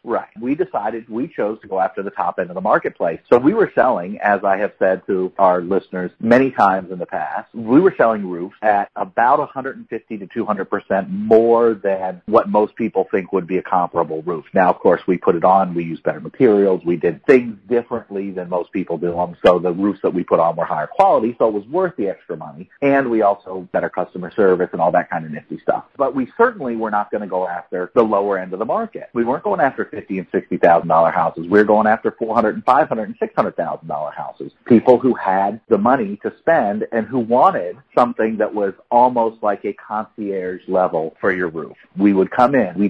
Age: 40-59